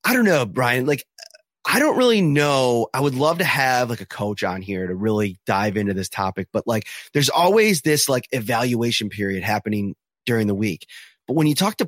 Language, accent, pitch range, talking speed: English, American, 120-155 Hz, 210 wpm